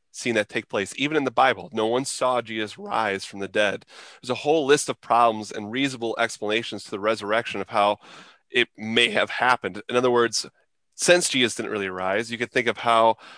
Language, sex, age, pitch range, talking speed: English, male, 30-49, 110-130 Hz, 210 wpm